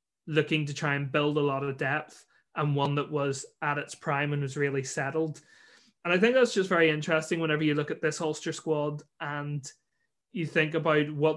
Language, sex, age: English, male, 20-39